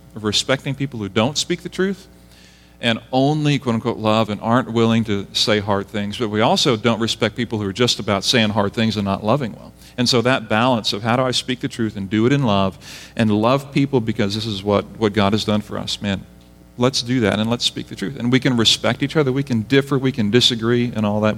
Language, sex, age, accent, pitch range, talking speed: English, male, 40-59, American, 100-120 Hz, 250 wpm